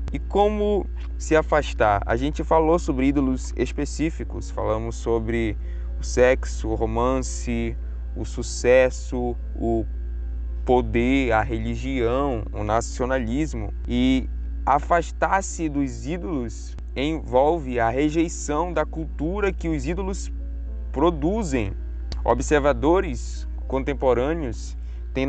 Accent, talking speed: Brazilian, 95 wpm